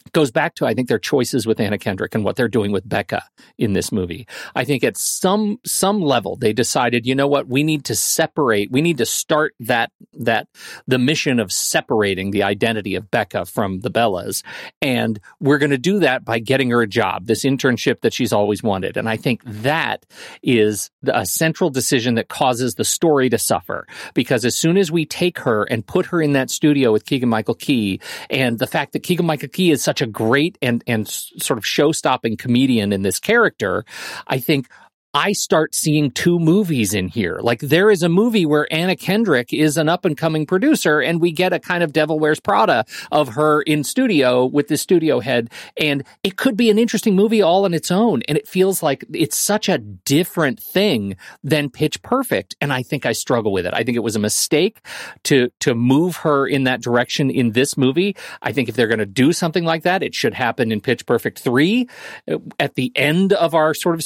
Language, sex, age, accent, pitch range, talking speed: English, male, 50-69, American, 120-175 Hz, 215 wpm